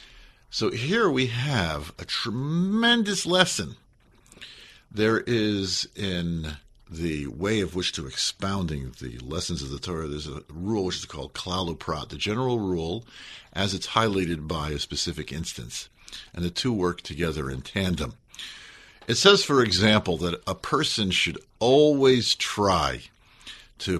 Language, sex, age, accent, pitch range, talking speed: English, male, 50-69, American, 75-110 Hz, 140 wpm